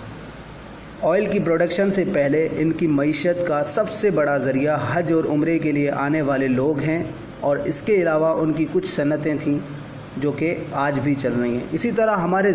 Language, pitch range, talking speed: Urdu, 150-185 Hz, 195 wpm